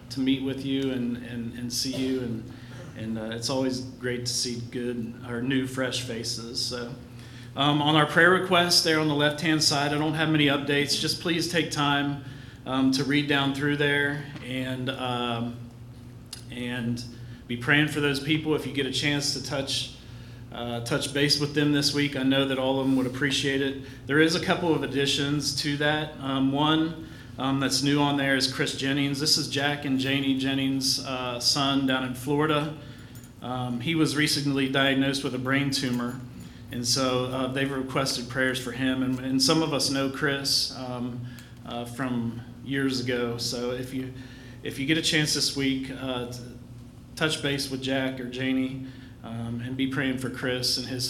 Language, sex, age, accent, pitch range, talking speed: English, male, 40-59, American, 125-145 Hz, 195 wpm